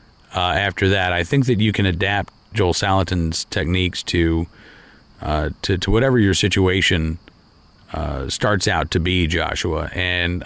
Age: 40-59